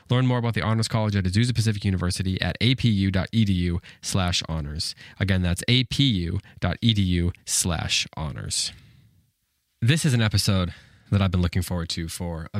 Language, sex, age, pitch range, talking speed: English, male, 20-39, 90-110 Hz, 150 wpm